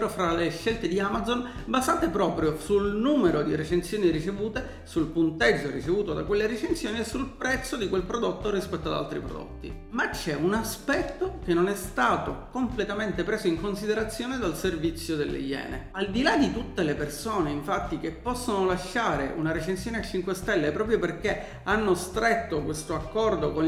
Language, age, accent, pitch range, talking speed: Italian, 40-59, native, 170-230 Hz, 170 wpm